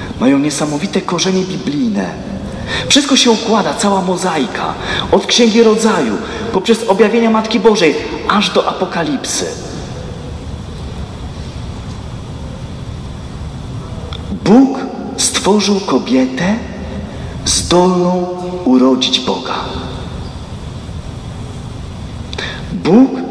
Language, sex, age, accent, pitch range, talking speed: Polish, male, 40-59, native, 160-225 Hz, 65 wpm